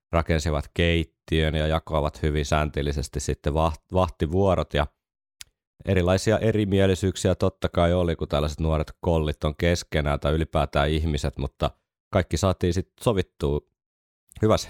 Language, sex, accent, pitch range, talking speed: Finnish, male, native, 75-90 Hz, 120 wpm